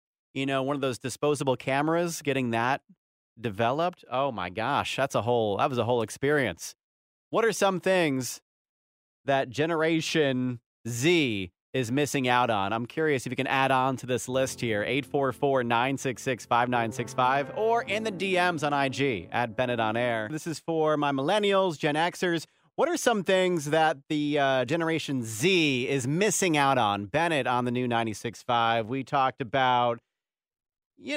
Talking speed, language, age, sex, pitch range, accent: 175 wpm, English, 30-49, male, 120-165 Hz, American